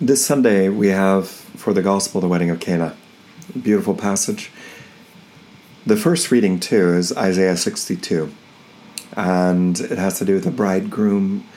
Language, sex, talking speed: English, male, 150 wpm